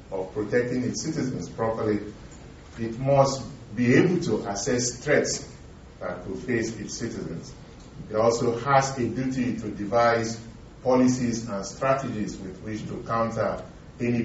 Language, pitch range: English, 110-140 Hz